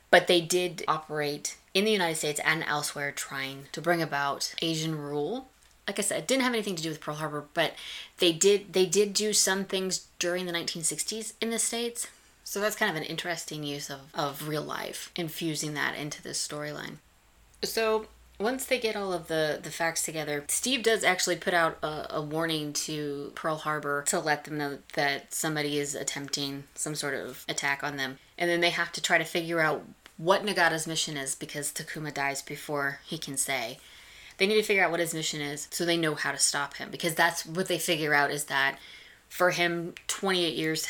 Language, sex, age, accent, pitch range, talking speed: English, female, 20-39, American, 145-180 Hz, 205 wpm